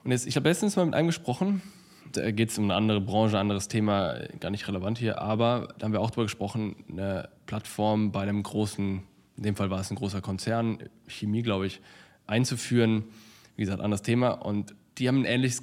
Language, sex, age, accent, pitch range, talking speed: German, male, 10-29, German, 100-125 Hz, 225 wpm